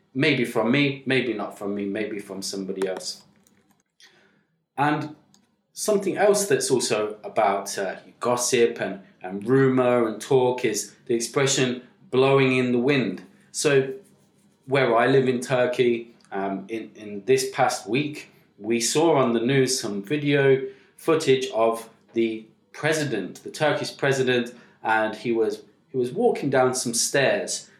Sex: male